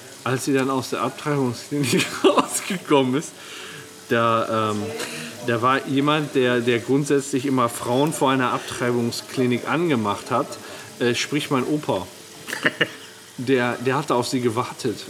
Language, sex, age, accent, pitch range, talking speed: German, male, 40-59, German, 115-135 Hz, 125 wpm